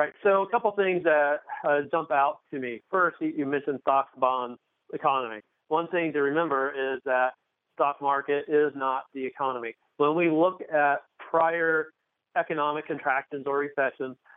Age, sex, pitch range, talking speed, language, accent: 40-59, male, 135-160 Hz, 165 wpm, English, American